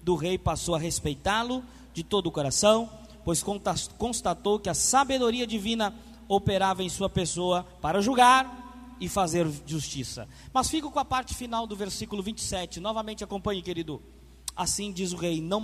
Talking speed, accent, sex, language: 155 wpm, Brazilian, male, Portuguese